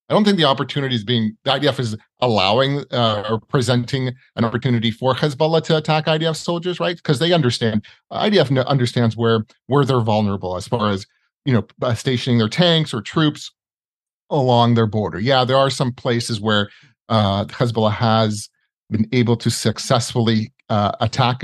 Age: 40-59